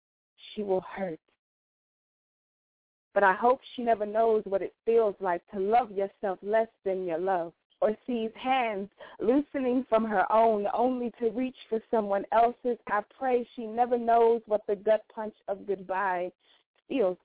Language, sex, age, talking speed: English, female, 20-39, 155 wpm